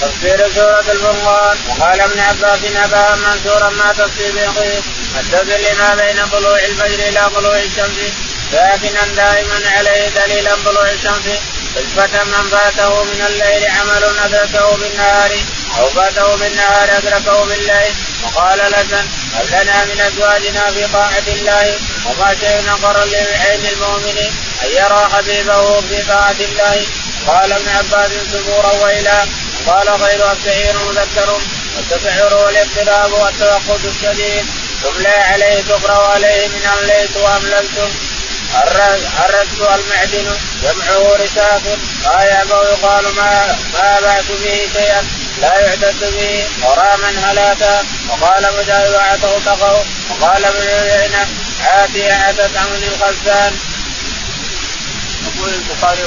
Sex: male